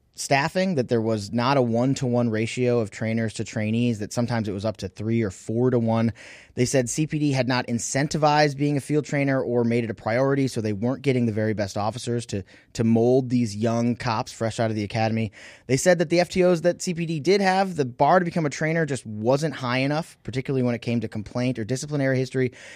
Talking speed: 225 wpm